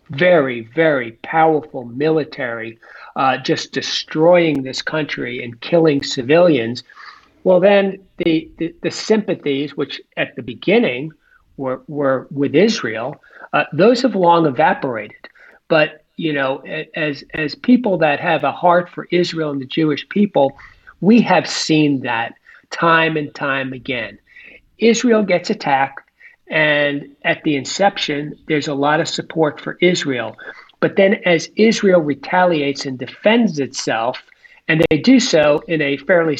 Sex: male